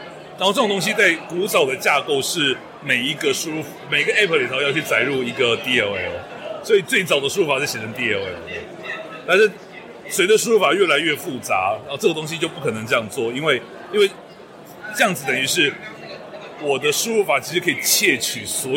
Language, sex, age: Chinese, male, 30-49